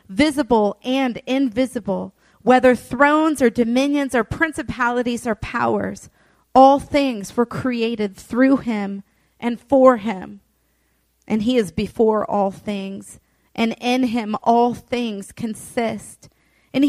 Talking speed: 115 wpm